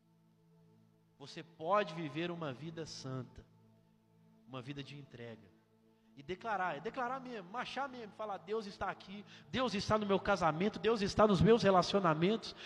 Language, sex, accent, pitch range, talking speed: Portuguese, male, Brazilian, 115-180 Hz, 145 wpm